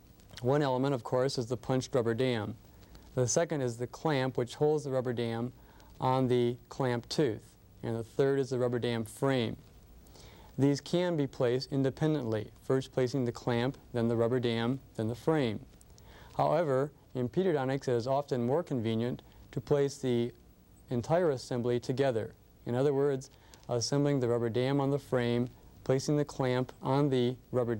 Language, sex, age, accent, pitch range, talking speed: English, male, 50-69, American, 120-140 Hz, 165 wpm